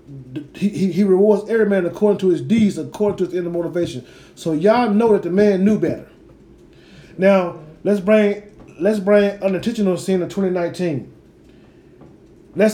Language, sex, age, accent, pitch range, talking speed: English, male, 30-49, American, 165-205 Hz, 160 wpm